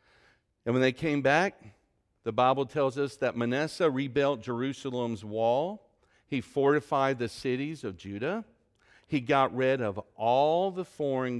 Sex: male